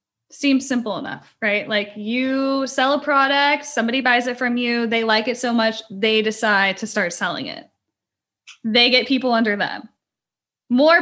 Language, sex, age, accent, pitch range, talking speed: English, female, 10-29, American, 225-290 Hz, 170 wpm